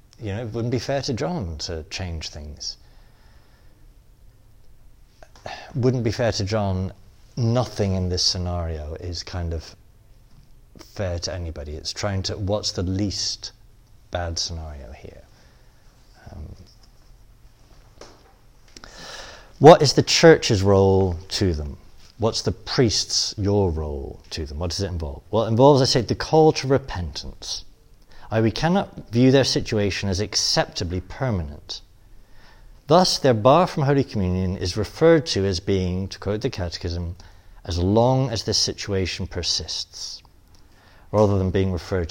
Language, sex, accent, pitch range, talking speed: English, male, British, 90-115 Hz, 135 wpm